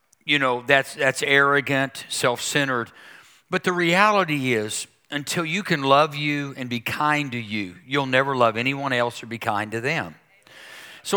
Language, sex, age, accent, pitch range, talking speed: English, male, 50-69, American, 120-155 Hz, 165 wpm